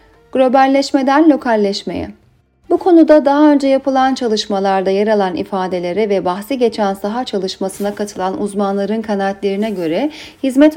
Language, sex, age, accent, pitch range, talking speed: Turkish, female, 40-59, native, 195-270 Hz, 115 wpm